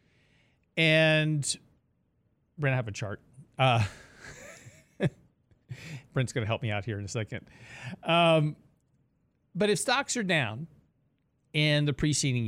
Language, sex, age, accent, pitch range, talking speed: English, male, 40-59, American, 120-150 Hz, 130 wpm